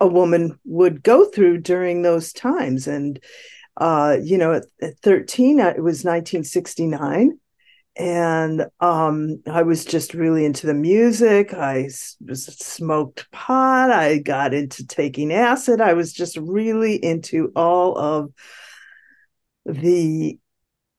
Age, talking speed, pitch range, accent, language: 50-69, 125 wpm, 155-200 Hz, American, English